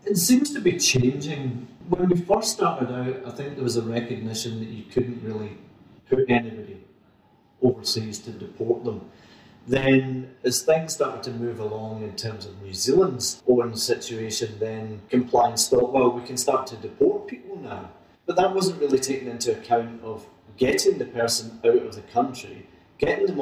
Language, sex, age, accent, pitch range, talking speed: English, male, 30-49, British, 115-190 Hz, 175 wpm